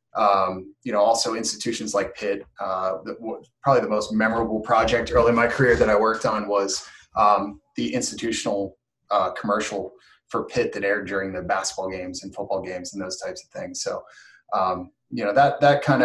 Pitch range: 100-125 Hz